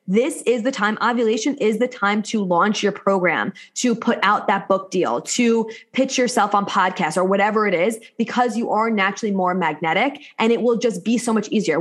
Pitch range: 205-255 Hz